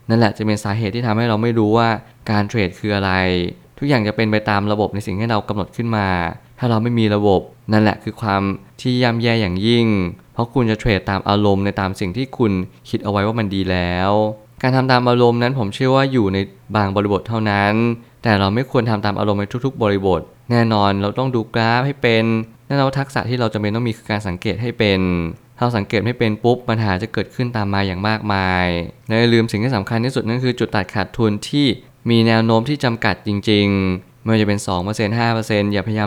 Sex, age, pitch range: male, 20-39, 100-120 Hz